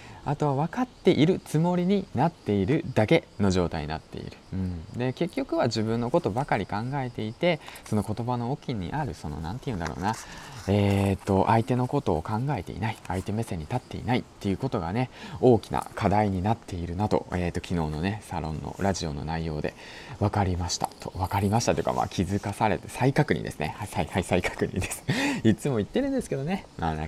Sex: male